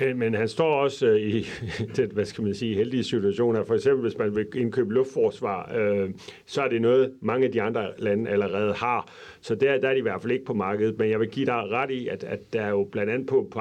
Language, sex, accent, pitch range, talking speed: Danish, male, native, 105-135 Hz, 255 wpm